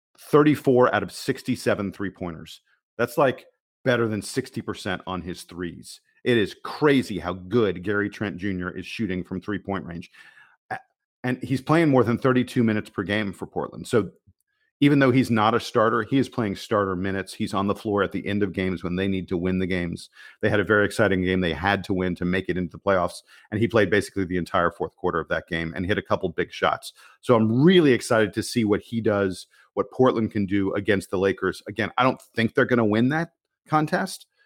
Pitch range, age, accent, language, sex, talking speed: 95-120 Hz, 40-59, American, English, male, 215 wpm